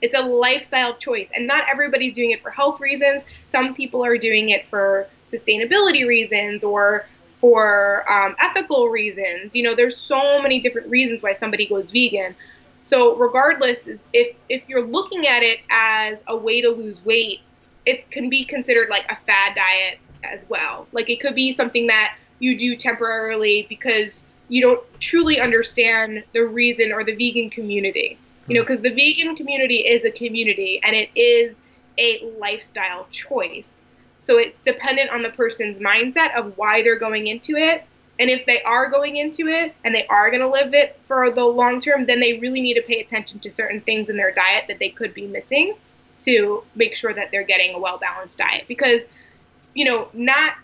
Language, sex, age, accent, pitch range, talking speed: English, female, 20-39, American, 220-280 Hz, 185 wpm